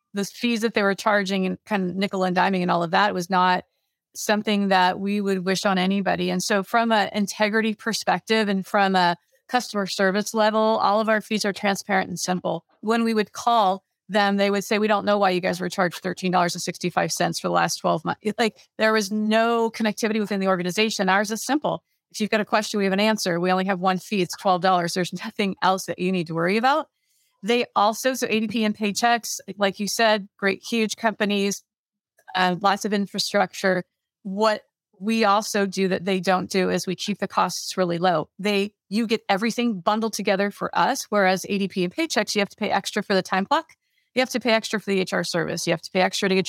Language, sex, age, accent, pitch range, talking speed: English, female, 30-49, American, 185-220 Hz, 220 wpm